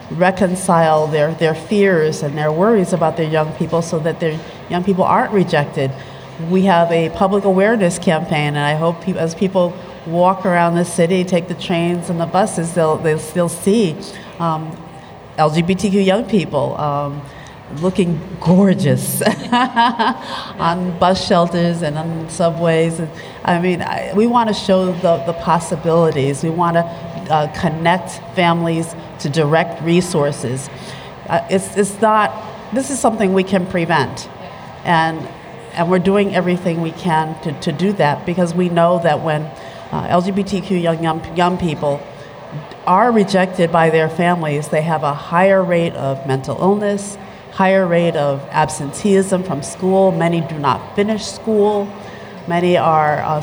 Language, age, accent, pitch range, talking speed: English, 40-59, American, 160-185 Hz, 150 wpm